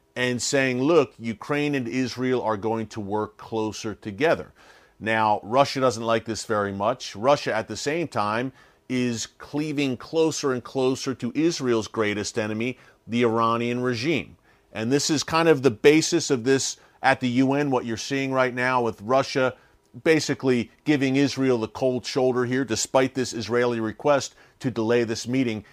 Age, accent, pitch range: 40-59, American, 110-135 Hz